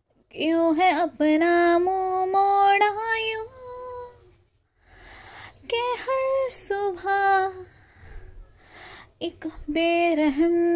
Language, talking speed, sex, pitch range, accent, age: Hindi, 60 wpm, female, 305-375 Hz, native, 20-39